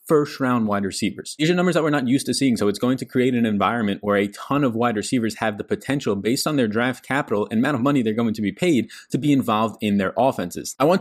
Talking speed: 280 wpm